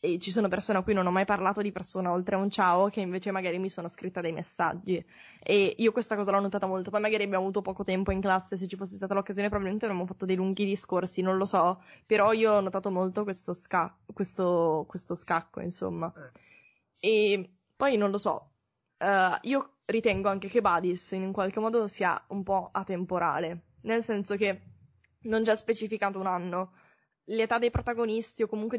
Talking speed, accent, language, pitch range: 200 wpm, native, Italian, 185-220 Hz